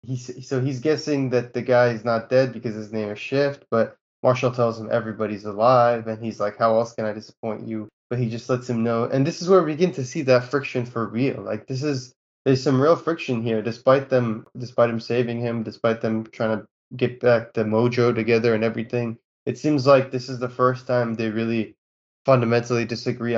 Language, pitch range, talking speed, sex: English, 110-125 Hz, 220 wpm, male